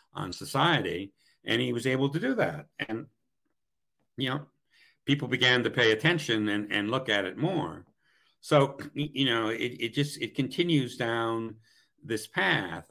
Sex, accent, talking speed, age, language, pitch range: male, American, 160 wpm, 60-79, English, 110-135 Hz